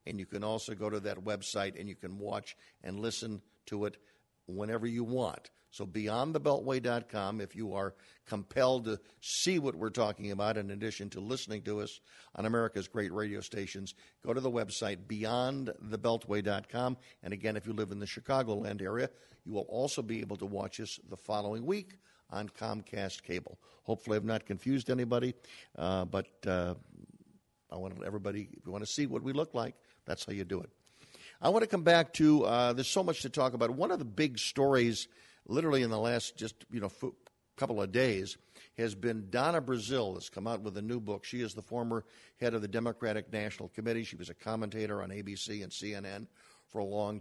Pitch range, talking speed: 100-120 Hz, 195 wpm